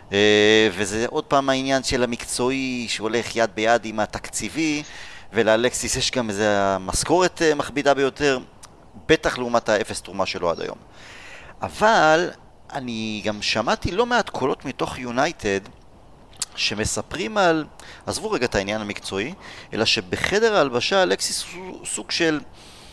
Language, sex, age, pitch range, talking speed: Hebrew, male, 30-49, 110-150 Hz, 125 wpm